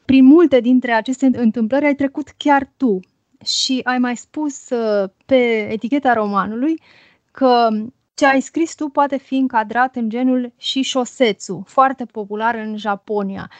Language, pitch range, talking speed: Romanian, 220-265 Hz, 140 wpm